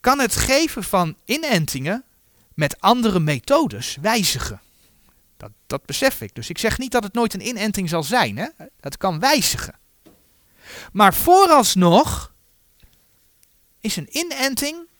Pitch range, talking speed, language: 140-235 Hz, 130 wpm, Dutch